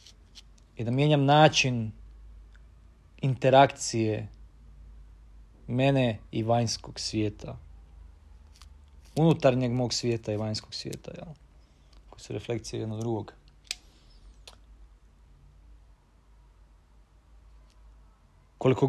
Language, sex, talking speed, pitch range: Croatian, male, 70 wpm, 80-130 Hz